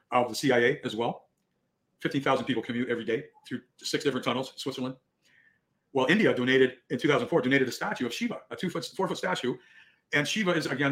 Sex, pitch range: male, 125-170 Hz